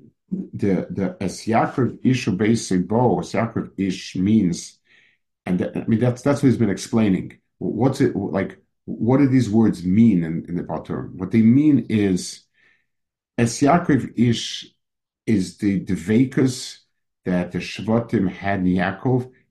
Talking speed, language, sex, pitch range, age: 140 wpm, English, male, 85-115 Hz, 50-69